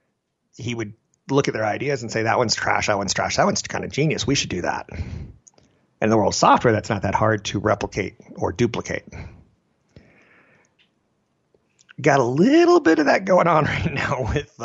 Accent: American